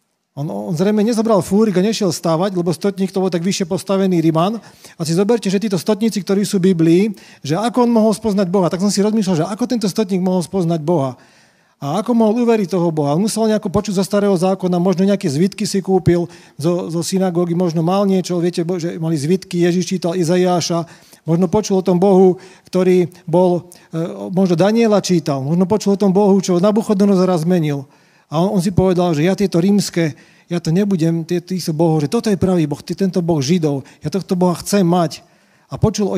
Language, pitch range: Slovak, 170-200 Hz